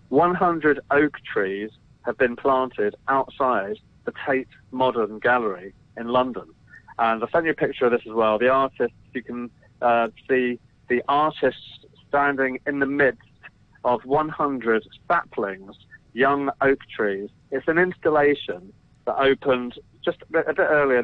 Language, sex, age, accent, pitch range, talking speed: English, male, 40-59, British, 120-140 Hz, 145 wpm